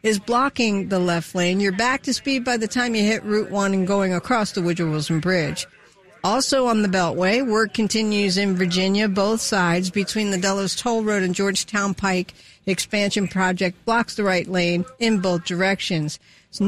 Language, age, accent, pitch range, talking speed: English, 50-69, American, 195-240 Hz, 185 wpm